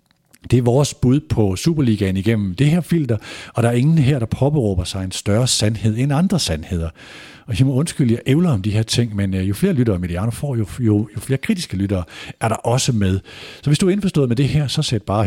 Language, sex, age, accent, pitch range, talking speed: Danish, male, 50-69, native, 95-130 Hz, 250 wpm